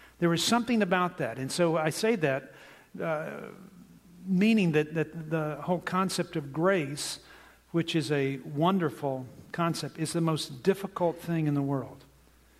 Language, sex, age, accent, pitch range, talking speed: English, male, 50-69, American, 140-170 Hz, 150 wpm